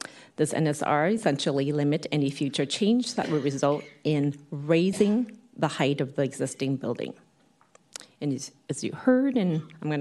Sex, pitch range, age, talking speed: female, 145-170 Hz, 40-59, 150 wpm